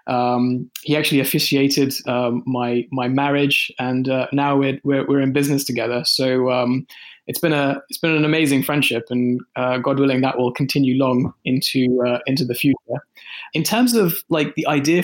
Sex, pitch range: male, 125-150 Hz